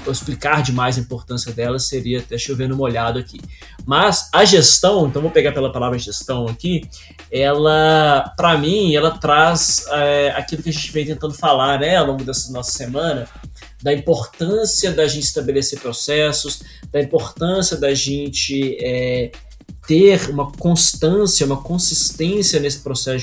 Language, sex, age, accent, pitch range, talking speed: Portuguese, male, 20-39, Brazilian, 130-155 Hz, 150 wpm